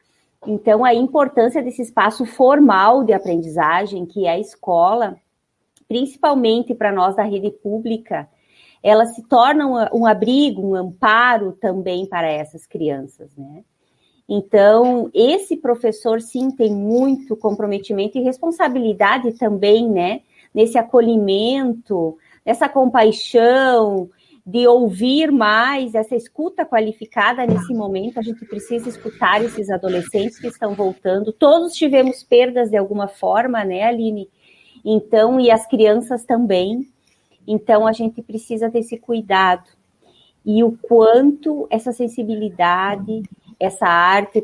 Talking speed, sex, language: 120 wpm, female, Portuguese